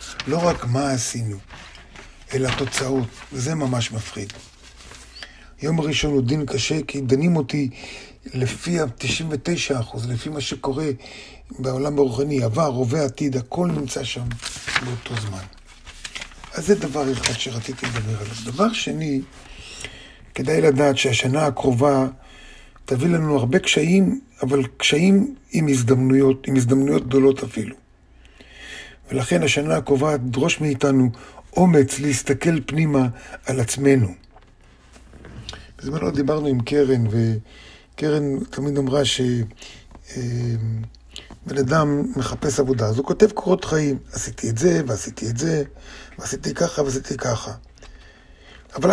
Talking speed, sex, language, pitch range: 120 wpm, male, Hebrew, 120-145 Hz